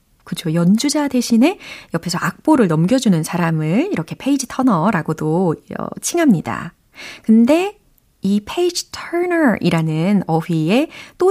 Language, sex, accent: Korean, female, native